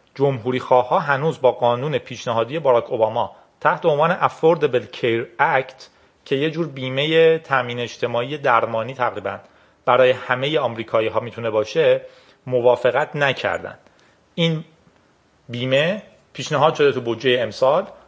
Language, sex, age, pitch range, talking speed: Persian, male, 40-59, 125-190 Hz, 120 wpm